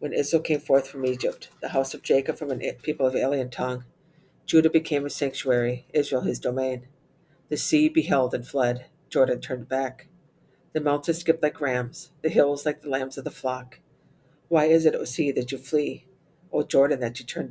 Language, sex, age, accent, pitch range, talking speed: English, female, 50-69, American, 125-155 Hz, 195 wpm